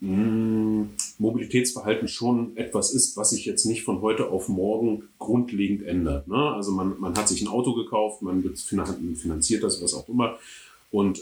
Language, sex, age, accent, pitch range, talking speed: German, male, 30-49, German, 105-135 Hz, 165 wpm